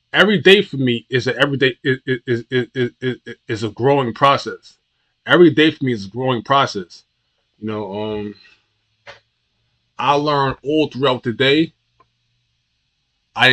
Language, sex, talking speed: English, male, 145 wpm